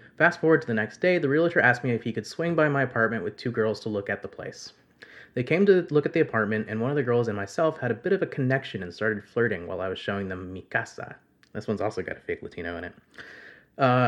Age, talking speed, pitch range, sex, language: 30-49, 275 wpm, 110-140 Hz, male, English